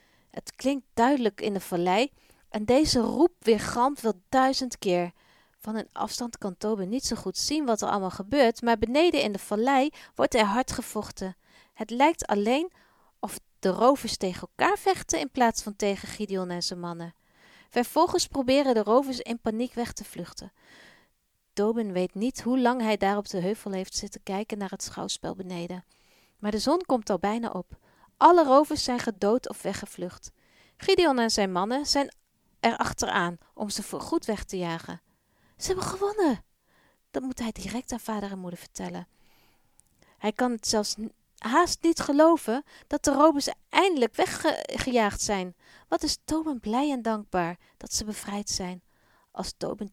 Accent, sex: Dutch, female